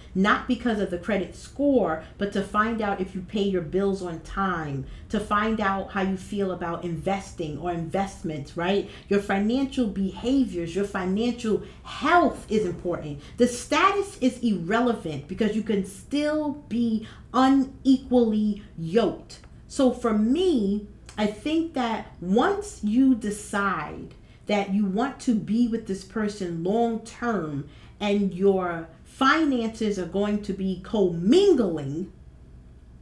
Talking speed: 135 wpm